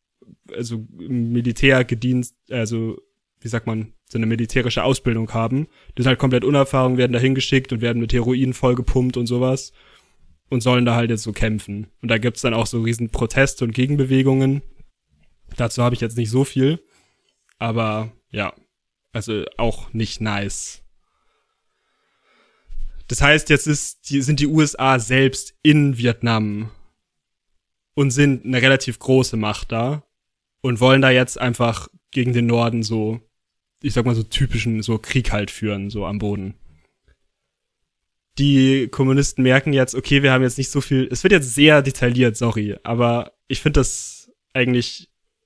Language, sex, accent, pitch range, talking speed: German, male, German, 115-135 Hz, 155 wpm